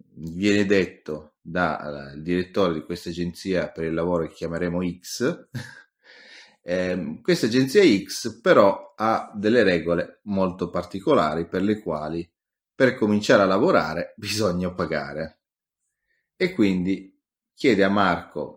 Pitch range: 85-100 Hz